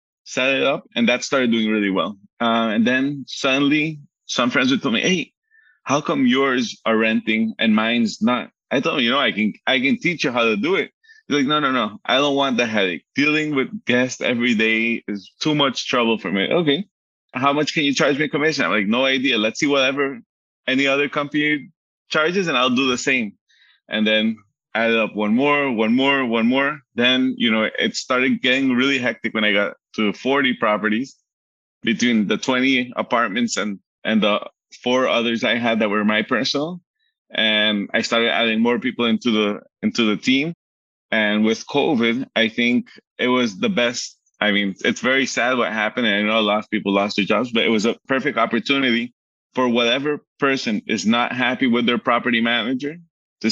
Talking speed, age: 200 wpm, 20-39